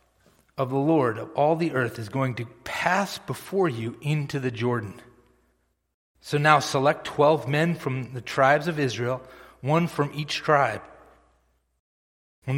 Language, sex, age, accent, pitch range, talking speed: English, male, 40-59, American, 120-160 Hz, 150 wpm